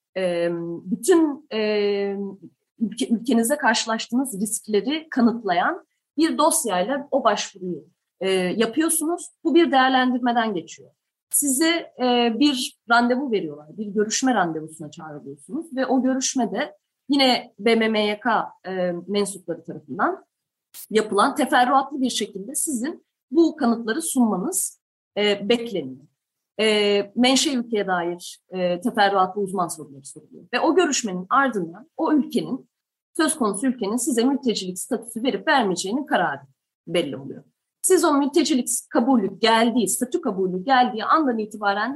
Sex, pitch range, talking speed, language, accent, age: female, 195-280 Hz, 105 wpm, Turkish, native, 30-49